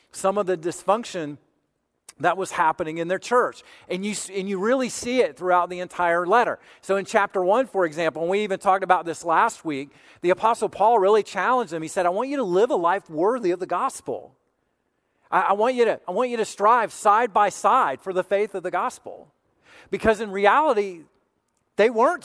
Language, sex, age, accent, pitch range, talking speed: English, male, 40-59, American, 180-245 Hz, 210 wpm